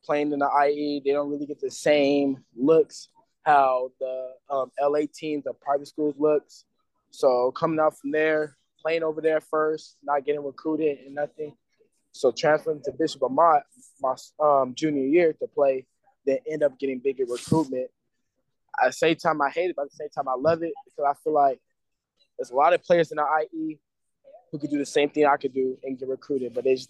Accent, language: American, English